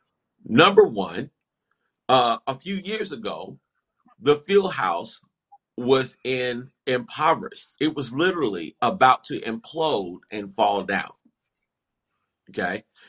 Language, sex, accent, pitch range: English, male, American, 135-200 Hz